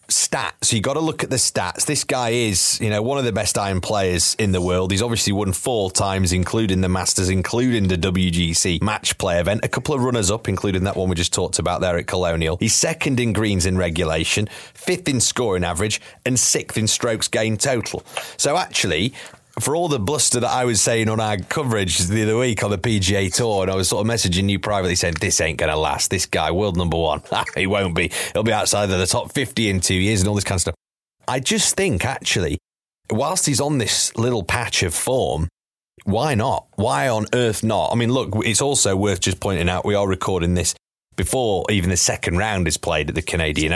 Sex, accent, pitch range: male, British, 90-115 Hz